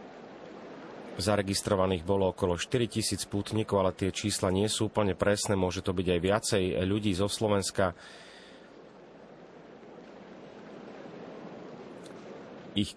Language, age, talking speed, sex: Slovak, 30-49, 95 wpm, male